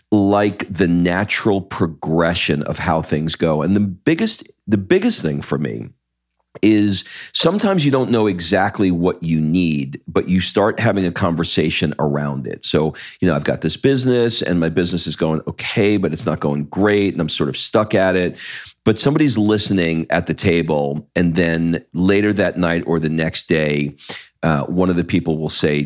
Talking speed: 185 wpm